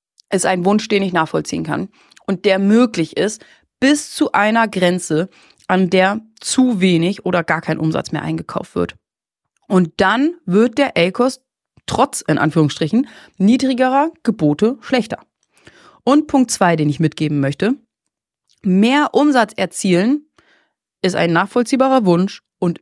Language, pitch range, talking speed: German, 185-255 Hz, 135 wpm